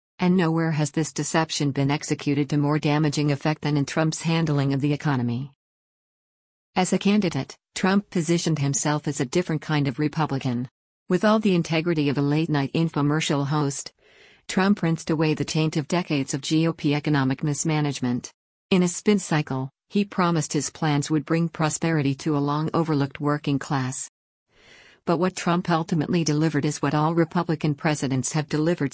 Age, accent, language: 50-69, American, English